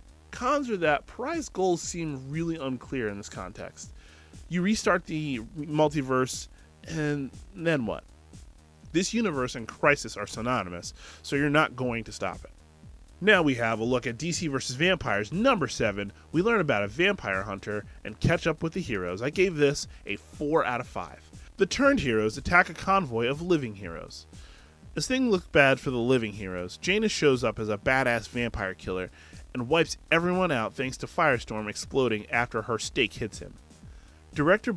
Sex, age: male, 20-39